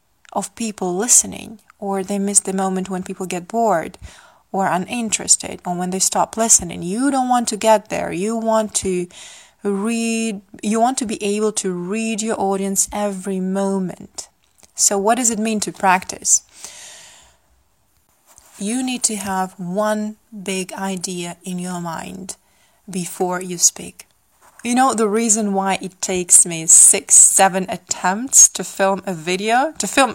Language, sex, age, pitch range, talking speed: English, female, 20-39, 185-225 Hz, 155 wpm